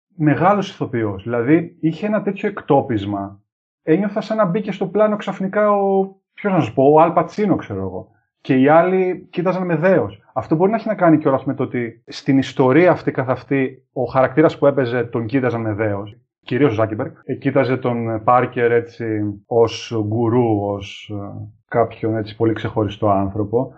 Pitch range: 115-155 Hz